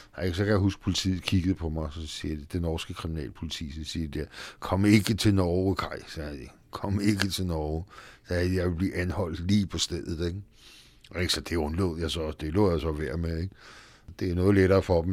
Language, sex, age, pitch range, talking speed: Danish, male, 60-79, 80-95 Hz, 230 wpm